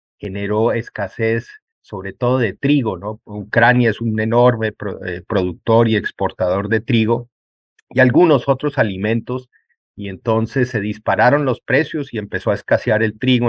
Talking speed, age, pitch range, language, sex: 150 wpm, 40-59, 105-125 Hz, Spanish, male